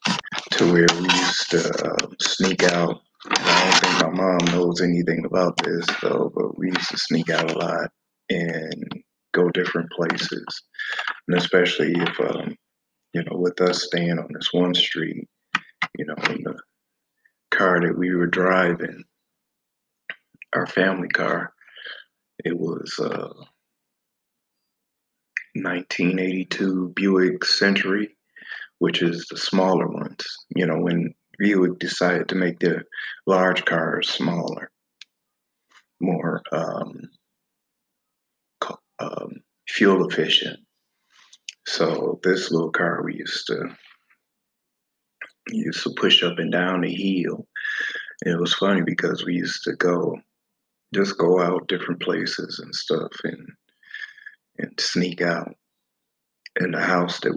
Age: 20-39